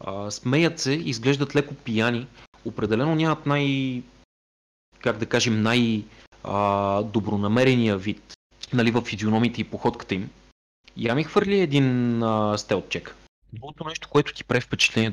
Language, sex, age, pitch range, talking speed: Bulgarian, male, 30-49, 105-130 Hz, 135 wpm